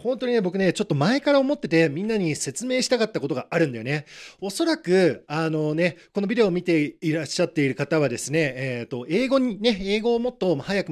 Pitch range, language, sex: 145-225 Hz, Japanese, male